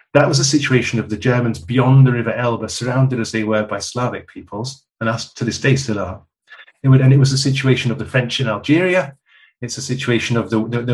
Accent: British